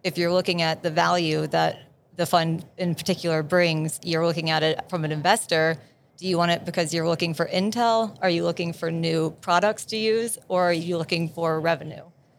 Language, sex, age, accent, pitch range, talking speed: English, female, 30-49, American, 160-180 Hz, 205 wpm